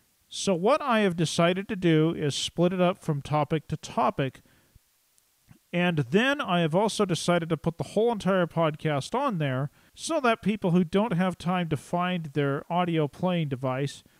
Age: 40-59